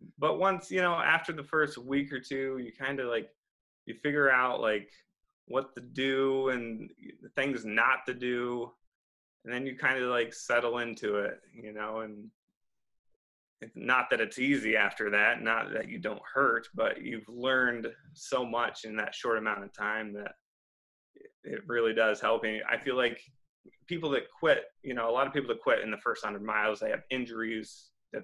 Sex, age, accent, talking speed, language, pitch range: male, 20-39, American, 190 wpm, English, 110-140 Hz